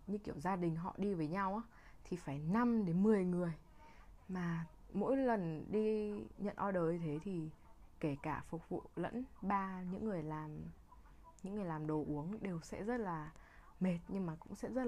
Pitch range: 155-205 Hz